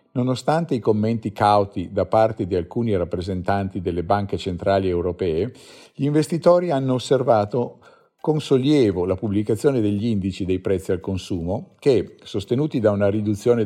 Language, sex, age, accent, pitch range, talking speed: Italian, male, 50-69, native, 95-125 Hz, 140 wpm